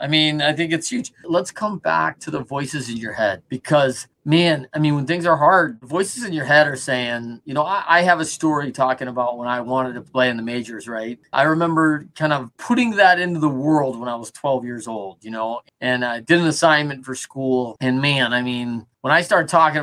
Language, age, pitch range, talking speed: English, 30-49, 125-170 Hz, 240 wpm